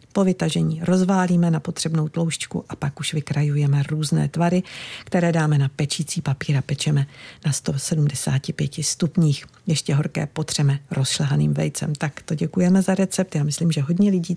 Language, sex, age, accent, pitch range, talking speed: Czech, female, 50-69, native, 150-190 Hz, 150 wpm